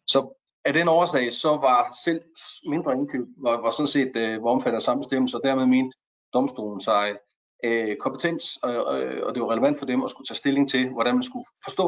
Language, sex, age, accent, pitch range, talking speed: Danish, male, 40-59, native, 120-155 Hz, 165 wpm